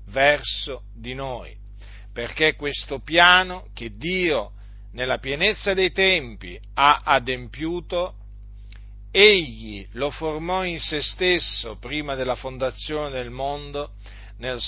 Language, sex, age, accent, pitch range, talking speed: Italian, male, 50-69, native, 100-155 Hz, 105 wpm